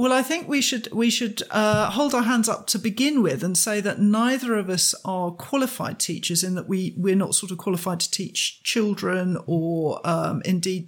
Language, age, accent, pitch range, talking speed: English, 40-59, British, 185-235 Hz, 210 wpm